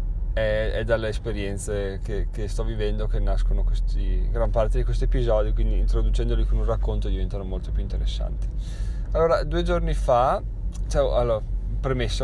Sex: male